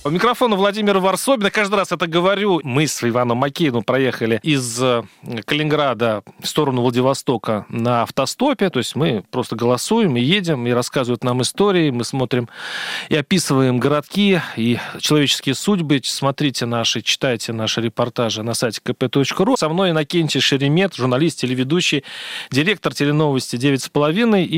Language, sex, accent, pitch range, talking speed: Russian, male, native, 125-175 Hz, 135 wpm